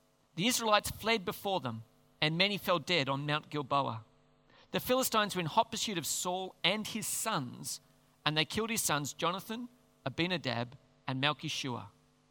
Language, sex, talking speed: English, male, 155 wpm